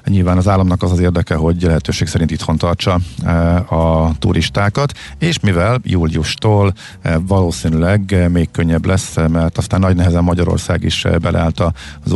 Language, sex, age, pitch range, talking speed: Hungarian, male, 50-69, 85-100 Hz, 140 wpm